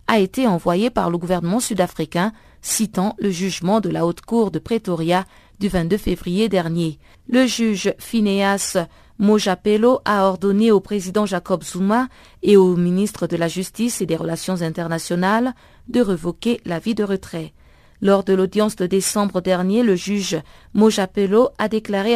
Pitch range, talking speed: 185-225 Hz, 150 wpm